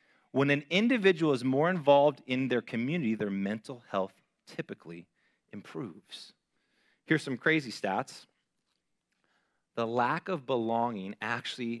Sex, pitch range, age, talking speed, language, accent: male, 105-145 Hz, 30-49, 115 wpm, English, American